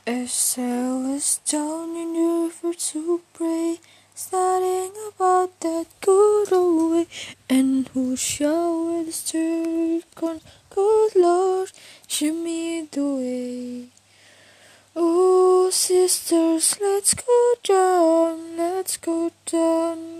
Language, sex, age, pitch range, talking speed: Indonesian, female, 20-39, 325-370 Hz, 100 wpm